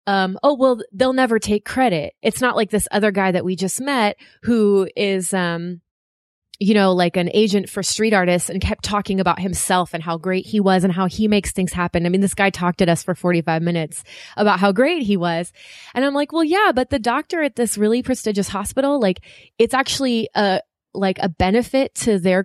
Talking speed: 220 wpm